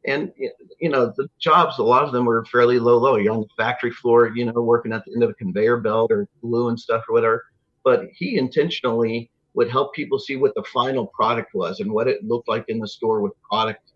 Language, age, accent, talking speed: English, 50-69, American, 230 wpm